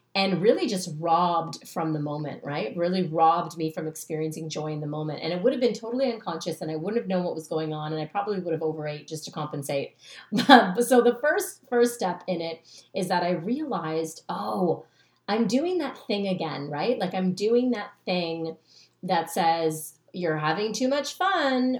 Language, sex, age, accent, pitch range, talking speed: English, female, 30-49, American, 165-245 Hz, 205 wpm